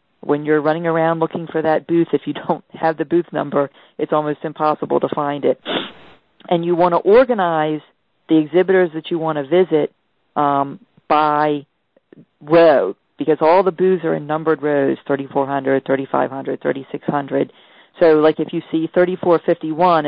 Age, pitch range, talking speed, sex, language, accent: 40-59, 150-170 Hz, 160 wpm, female, English, American